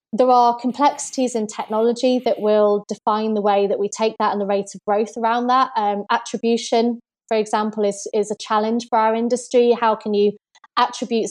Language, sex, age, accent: English, female, 20-39, British